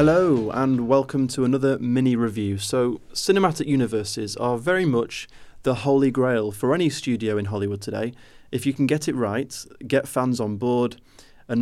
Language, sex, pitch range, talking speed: English, male, 110-135 Hz, 165 wpm